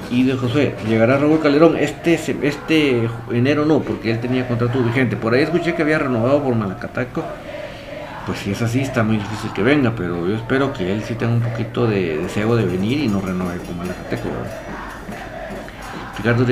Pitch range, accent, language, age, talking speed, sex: 110-140 Hz, Mexican, Spanish, 50-69, 190 wpm, male